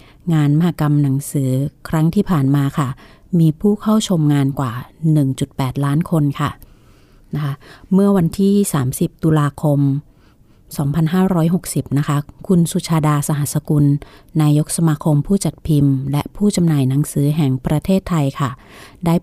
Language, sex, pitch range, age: Thai, female, 140-170 Hz, 30-49